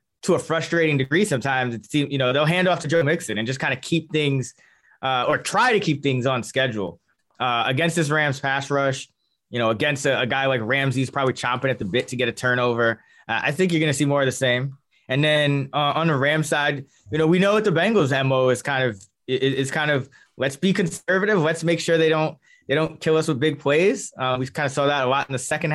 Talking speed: 260 wpm